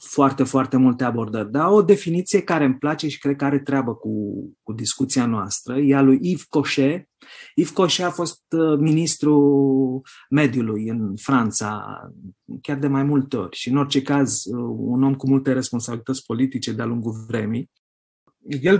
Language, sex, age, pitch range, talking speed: Romanian, male, 30-49, 120-150 Hz, 165 wpm